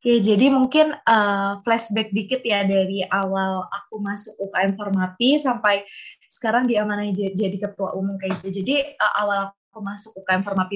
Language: Indonesian